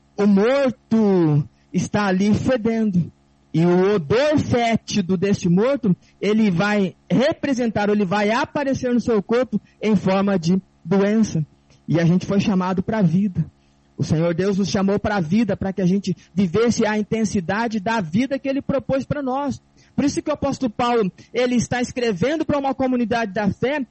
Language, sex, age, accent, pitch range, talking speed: Portuguese, male, 20-39, Brazilian, 205-280 Hz, 170 wpm